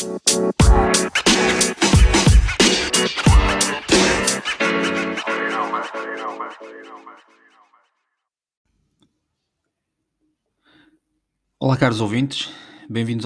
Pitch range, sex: 105-140 Hz, male